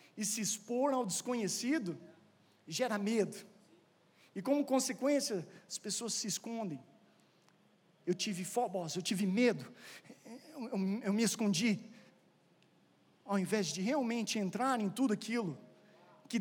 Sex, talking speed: male, 120 wpm